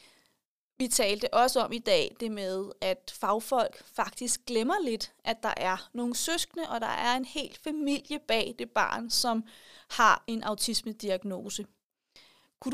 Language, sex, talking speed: Danish, female, 150 wpm